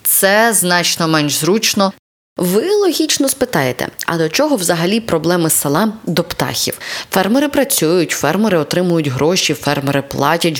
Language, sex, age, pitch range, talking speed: Ukrainian, female, 20-39, 145-180 Hz, 125 wpm